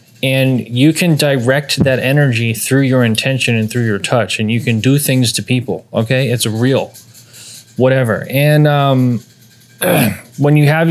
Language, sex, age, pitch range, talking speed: English, male, 20-39, 115-135 Hz, 160 wpm